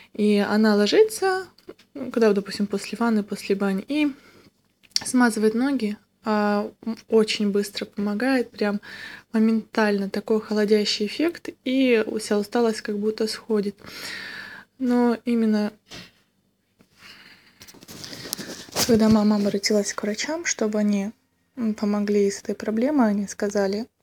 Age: 20-39